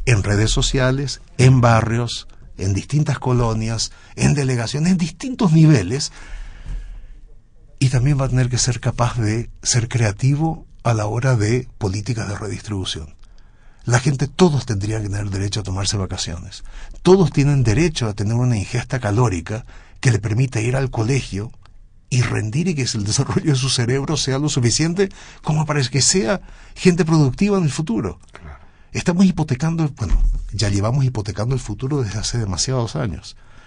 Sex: male